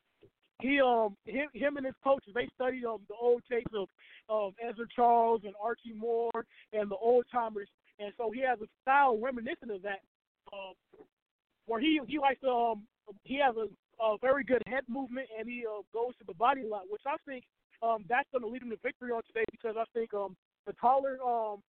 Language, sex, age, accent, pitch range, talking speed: English, male, 20-39, American, 215-255 Hz, 210 wpm